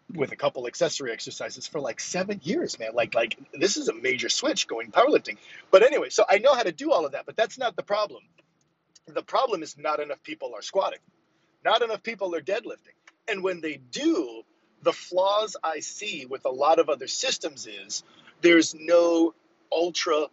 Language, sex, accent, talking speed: English, male, American, 195 wpm